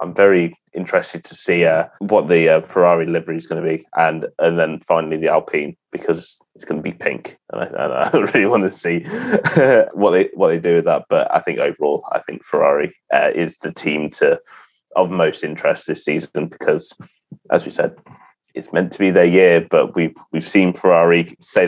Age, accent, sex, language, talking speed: 20-39, British, male, English, 210 wpm